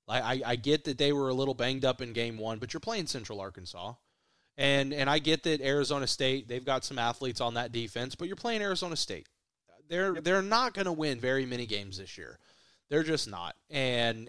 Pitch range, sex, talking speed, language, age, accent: 115-145 Hz, male, 215 wpm, English, 30-49, American